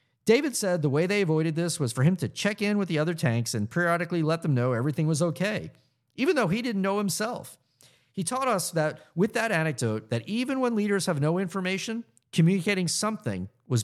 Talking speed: 210 wpm